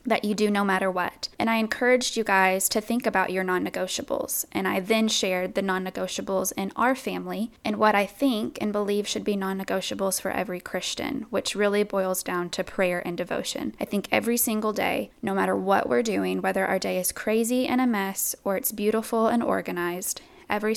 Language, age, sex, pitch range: English, 10-29, female, 185-215 Hz